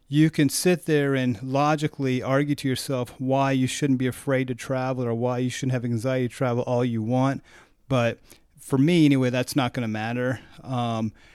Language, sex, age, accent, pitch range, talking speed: English, male, 30-49, American, 125-150 Hz, 195 wpm